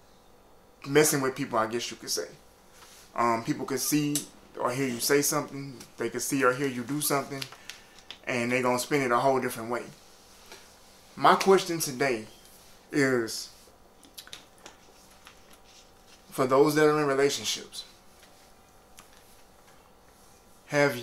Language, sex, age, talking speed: English, male, 20-39, 130 wpm